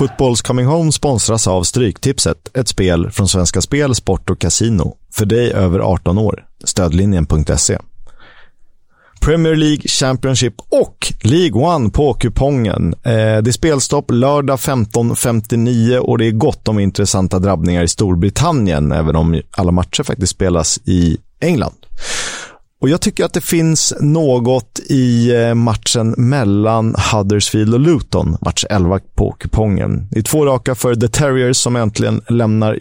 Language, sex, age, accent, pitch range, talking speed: Swedish, male, 30-49, native, 95-125 Hz, 135 wpm